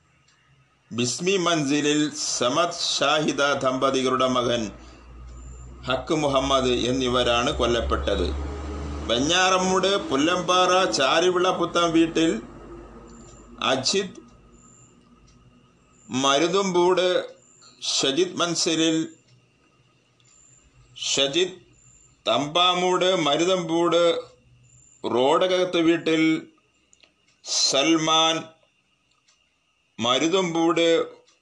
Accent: native